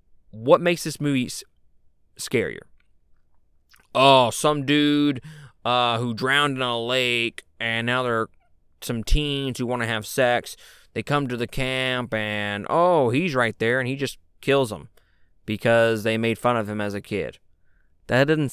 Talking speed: 165 wpm